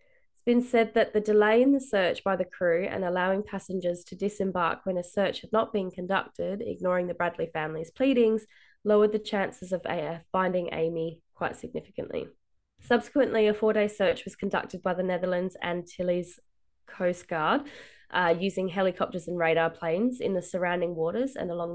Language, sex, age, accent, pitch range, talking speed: English, female, 20-39, Australian, 175-215 Hz, 175 wpm